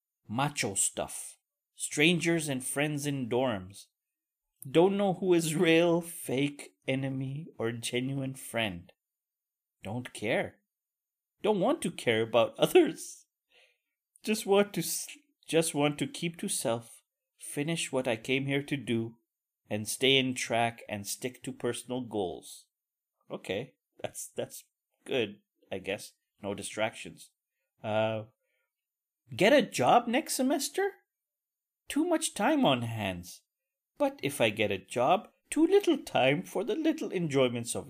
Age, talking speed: 30-49, 130 wpm